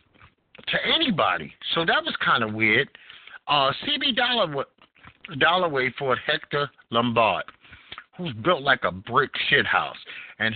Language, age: English, 50-69